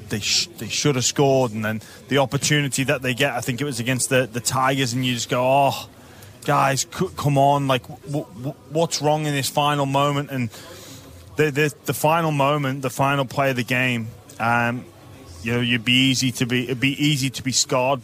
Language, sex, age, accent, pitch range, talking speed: English, male, 20-39, British, 125-145 Hz, 215 wpm